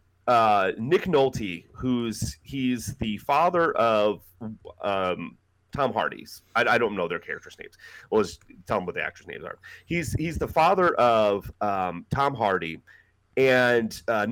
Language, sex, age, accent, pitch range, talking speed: English, male, 30-49, American, 105-135 Hz, 155 wpm